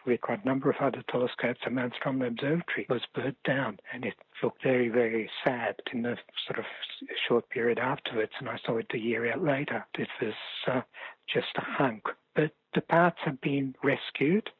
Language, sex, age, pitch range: English, male, 60-79, 125-145 Hz